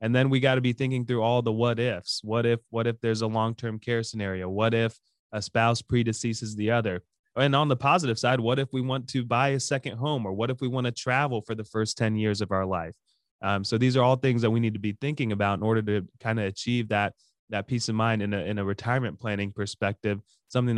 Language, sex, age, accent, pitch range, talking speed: English, male, 20-39, American, 105-120 Hz, 255 wpm